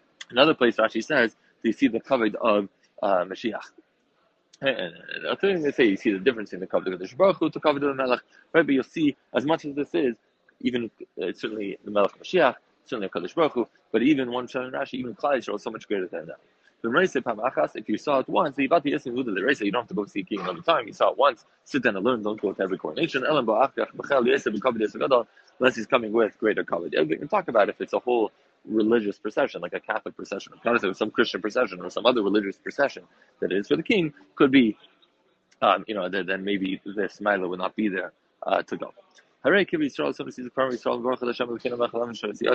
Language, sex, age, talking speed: English, male, 20-39, 200 wpm